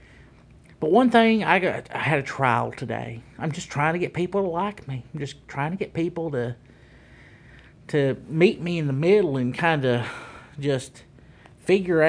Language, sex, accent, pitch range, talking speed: English, male, American, 125-160 Hz, 180 wpm